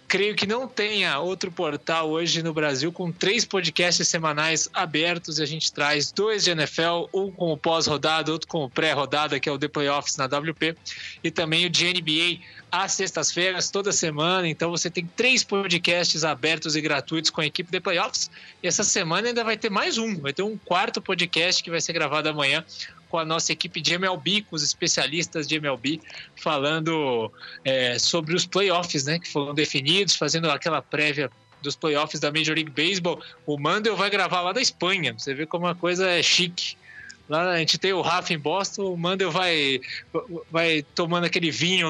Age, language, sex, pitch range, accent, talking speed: 20-39, English, male, 155-185 Hz, Brazilian, 195 wpm